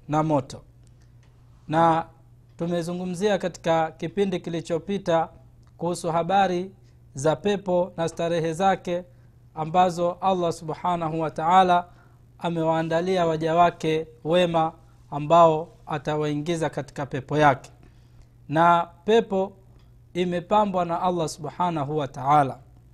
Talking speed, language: 95 wpm, Swahili